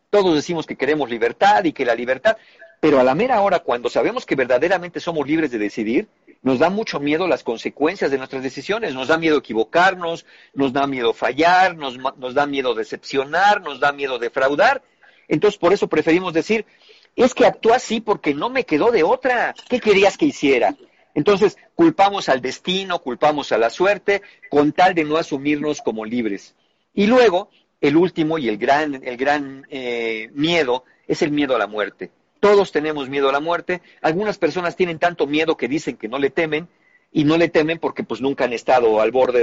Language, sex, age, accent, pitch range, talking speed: Spanish, male, 50-69, Mexican, 140-205 Hz, 190 wpm